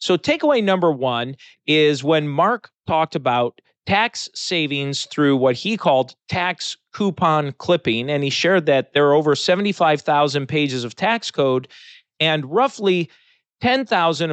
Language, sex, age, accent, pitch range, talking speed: English, male, 40-59, American, 140-180 Hz, 140 wpm